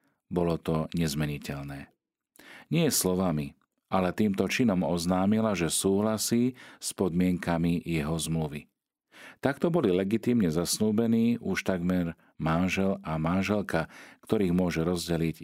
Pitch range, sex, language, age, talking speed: 80-100 Hz, male, Slovak, 40-59, 105 wpm